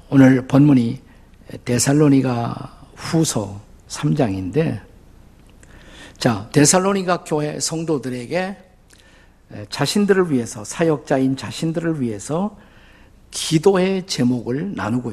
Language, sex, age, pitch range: Korean, male, 50-69, 105-150 Hz